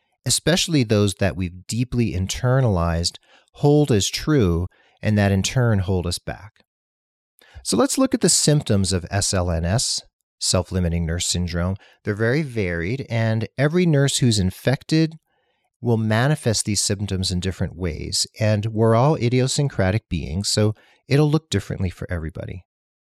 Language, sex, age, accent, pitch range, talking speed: English, male, 40-59, American, 95-135 Hz, 140 wpm